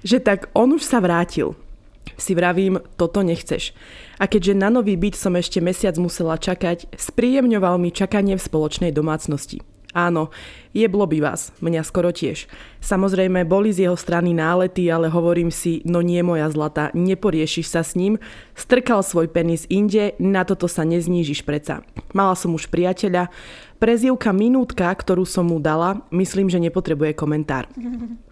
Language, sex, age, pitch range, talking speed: Slovak, female, 20-39, 165-195 Hz, 155 wpm